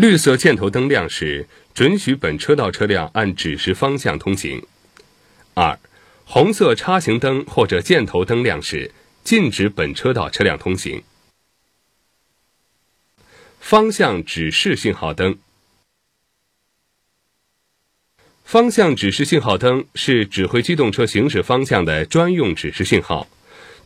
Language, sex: Chinese, male